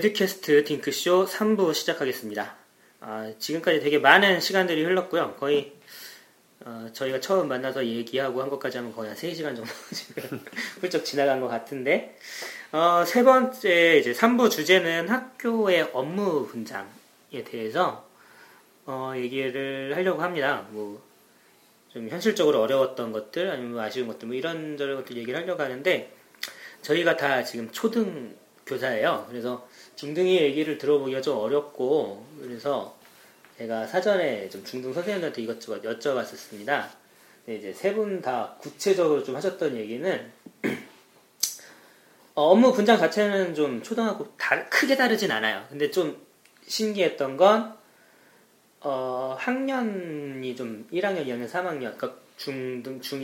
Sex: male